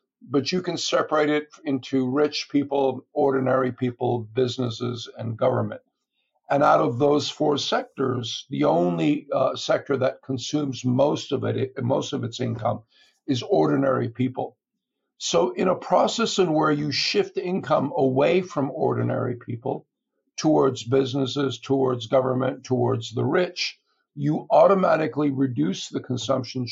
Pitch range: 125-145 Hz